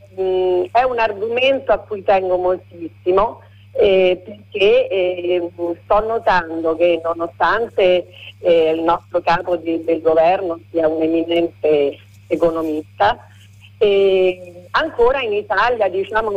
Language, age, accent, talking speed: Italian, 50-69, native, 110 wpm